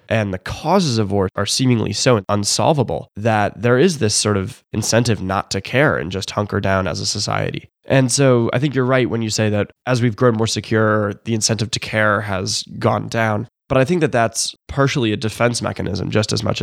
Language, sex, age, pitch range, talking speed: English, male, 20-39, 100-115 Hz, 215 wpm